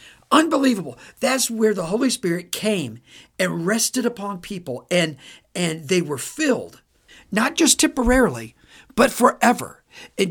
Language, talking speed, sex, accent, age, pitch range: English, 130 wpm, male, American, 50-69, 155-230 Hz